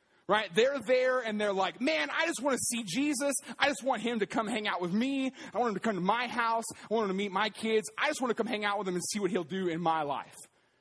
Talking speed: 305 wpm